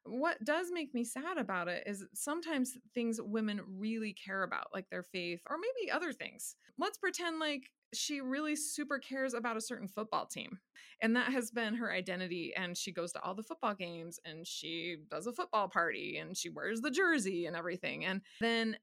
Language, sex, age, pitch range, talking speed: English, female, 20-39, 180-245 Hz, 200 wpm